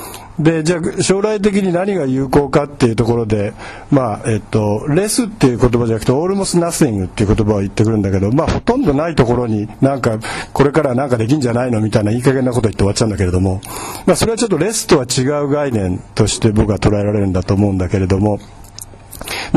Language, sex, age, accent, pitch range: Japanese, male, 50-69, native, 110-155 Hz